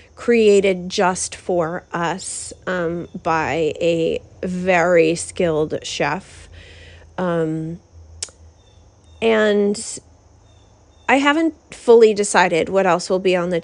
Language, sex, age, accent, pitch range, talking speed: English, female, 30-49, American, 170-210 Hz, 95 wpm